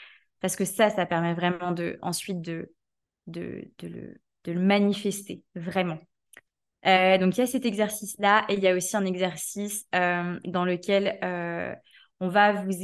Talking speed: 155 wpm